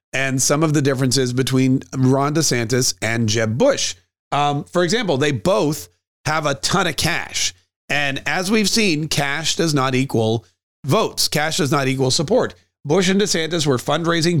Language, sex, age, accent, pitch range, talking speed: English, male, 40-59, American, 125-155 Hz, 165 wpm